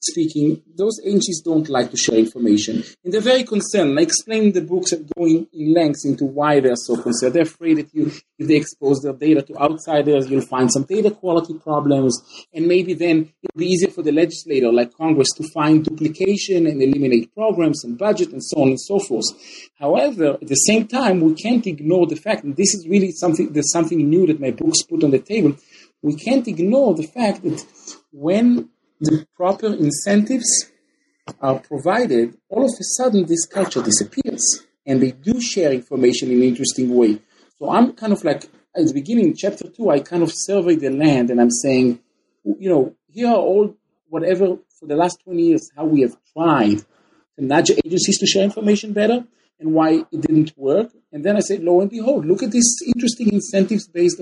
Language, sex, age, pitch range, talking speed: English, male, 40-59, 145-205 Hz, 195 wpm